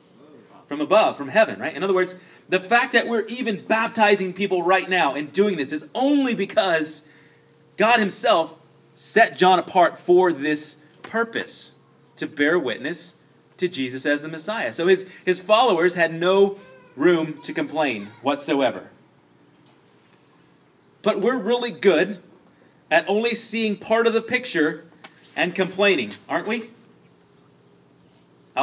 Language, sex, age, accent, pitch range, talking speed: English, male, 30-49, American, 155-210 Hz, 135 wpm